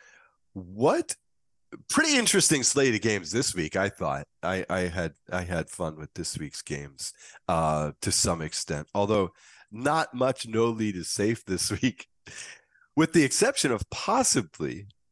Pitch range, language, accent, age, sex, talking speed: 85-110 Hz, English, American, 40-59, male, 150 wpm